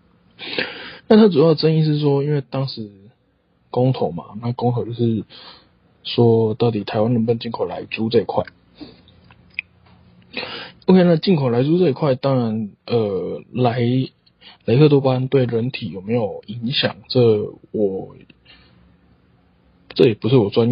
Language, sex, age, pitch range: Chinese, male, 20-39, 110-130 Hz